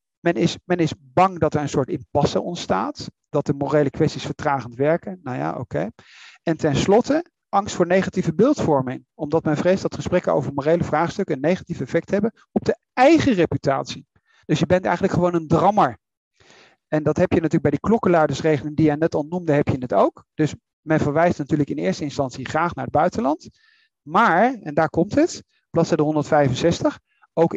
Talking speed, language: 185 wpm, Dutch